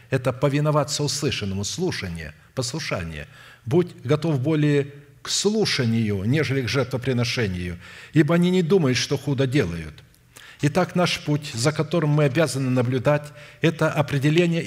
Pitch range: 120-150 Hz